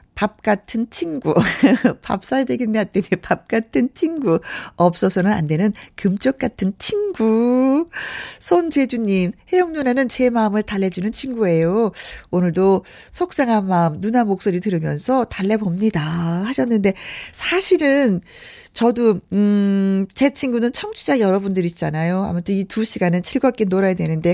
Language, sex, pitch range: Korean, female, 180-250 Hz